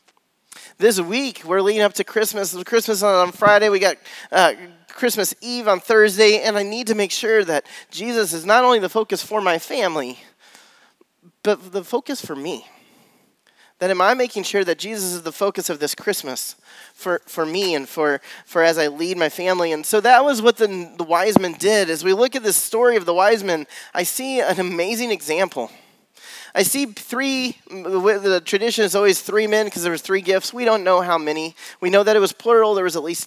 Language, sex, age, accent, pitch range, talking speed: English, male, 30-49, American, 175-220 Hz, 210 wpm